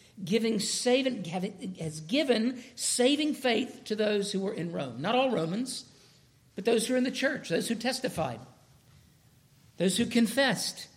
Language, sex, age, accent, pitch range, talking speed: English, male, 50-69, American, 150-225 Hz, 155 wpm